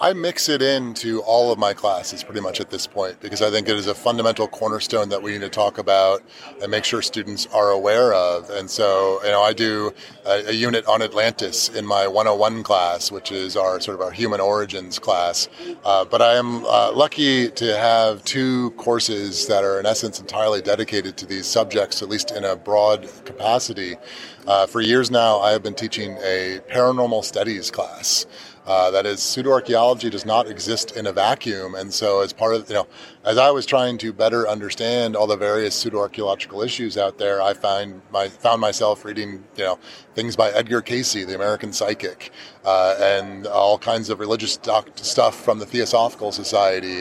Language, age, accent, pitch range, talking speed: English, 30-49, American, 100-120 Hz, 195 wpm